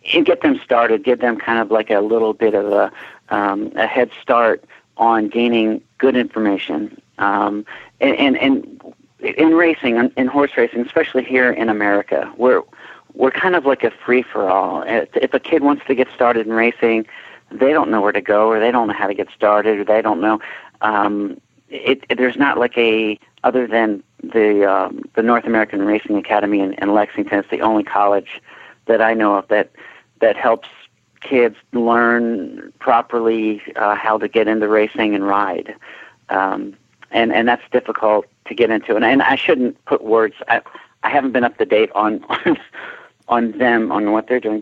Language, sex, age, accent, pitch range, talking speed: English, male, 50-69, American, 105-125 Hz, 190 wpm